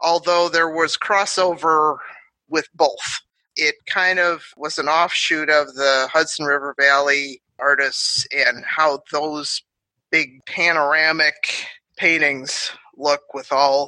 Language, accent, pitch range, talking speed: English, American, 140-170 Hz, 115 wpm